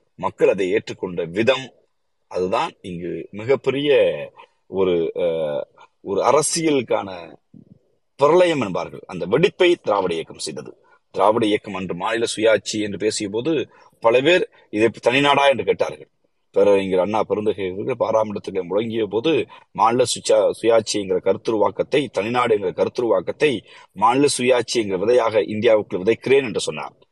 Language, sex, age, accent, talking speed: Tamil, male, 30-49, native, 110 wpm